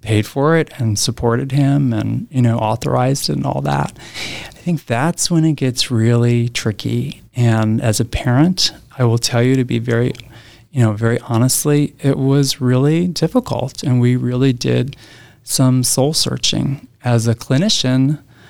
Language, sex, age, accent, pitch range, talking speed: English, male, 30-49, American, 115-130 Hz, 160 wpm